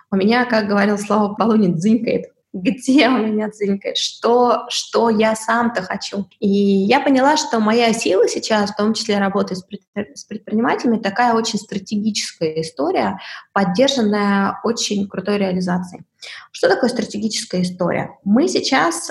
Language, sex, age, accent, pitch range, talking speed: Russian, female, 20-39, native, 195-240 Hz, 130 wpm